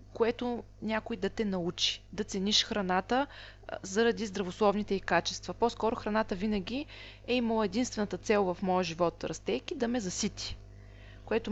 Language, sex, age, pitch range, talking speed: Bulgarian, female, 30-49, 175-220 Hz, 140 wpm